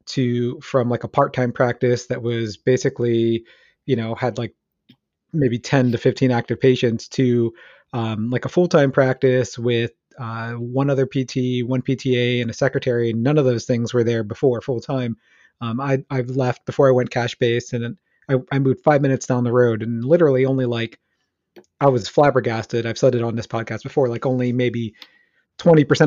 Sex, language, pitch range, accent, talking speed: male, English, 120-140 Hz, American, 175 wpm